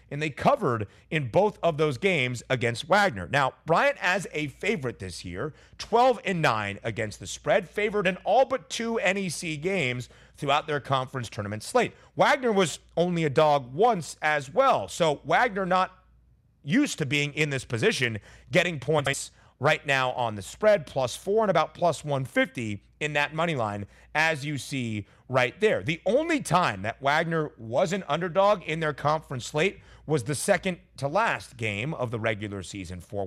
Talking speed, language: 175 wpm, English